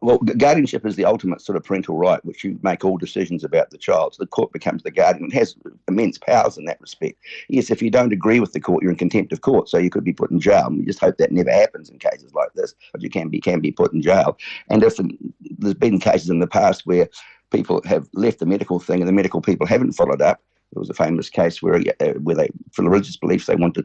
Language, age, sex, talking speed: English, 50-69, male, 260 wpm